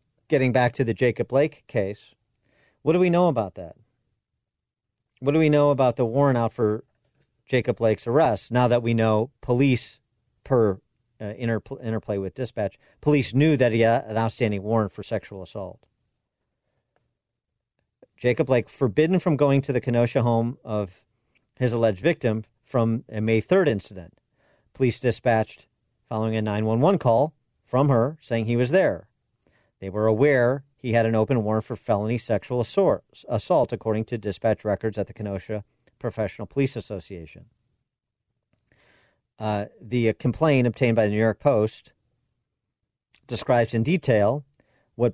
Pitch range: 110-135 Hz